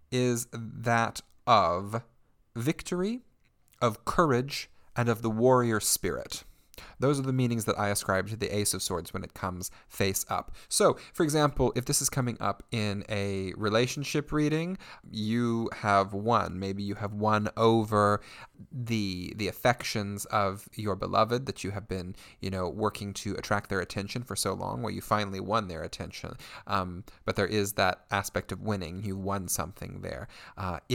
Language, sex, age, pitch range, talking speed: English, male, 30-49, 95-115 Hz, 170 wpm